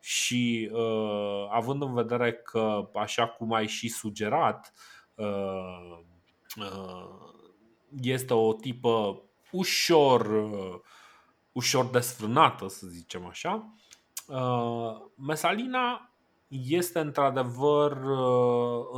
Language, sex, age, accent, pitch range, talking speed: Romanian, male, 30-49, native, 110-135 Hz, 90 wpm